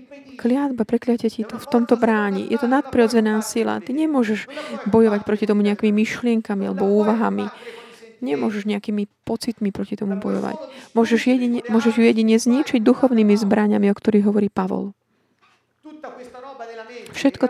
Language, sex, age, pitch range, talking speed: Slovak, female, 30-49, 210-245 Hz, 135 wpm